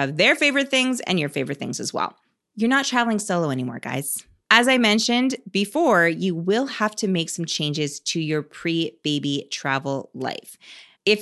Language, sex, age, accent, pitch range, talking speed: English, female, 20-39, American, 150-225 Hz, 175 wpm